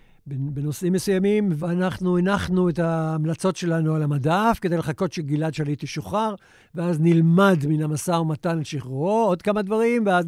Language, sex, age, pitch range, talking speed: Hebrew, male, 60-79, 155-185 Hz, 150 wpm